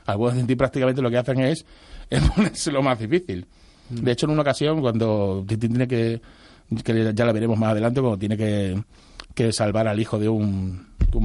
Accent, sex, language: Spanish, male, Spanish